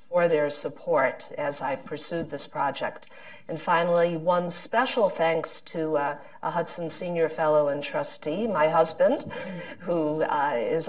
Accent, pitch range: American, 150-205 Hz